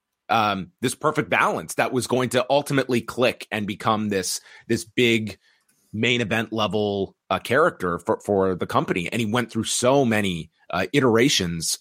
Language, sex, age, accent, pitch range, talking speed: English, male, 30-49, American, 95-120 Hz, 165 wpm